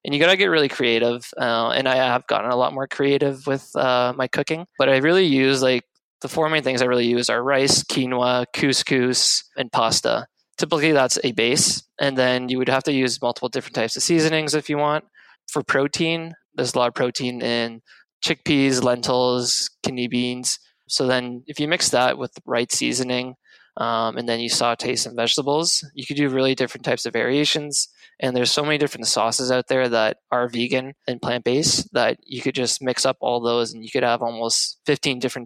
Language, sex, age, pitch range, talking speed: English, male, 20-39, 120-140 Hz, 205 wpm